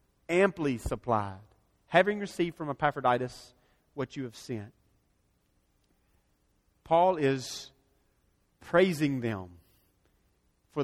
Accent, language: American, English